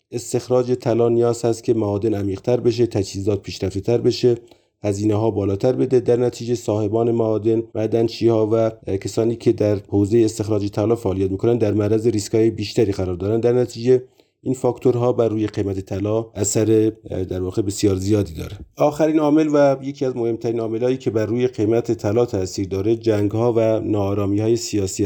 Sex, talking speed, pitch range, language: male, 170 wpm, 105-120 Hz, Persian